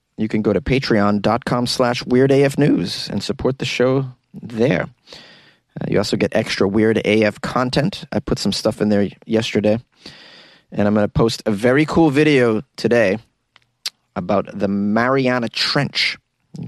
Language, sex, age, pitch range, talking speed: English, male, 30-49, 105-135 Hz, 150 wpm